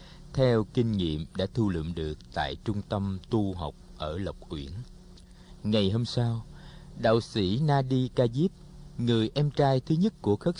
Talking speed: 170 wpm